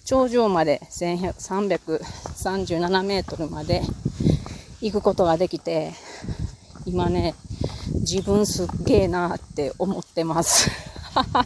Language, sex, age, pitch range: Japanese, female, 30-49, 165-225 Hz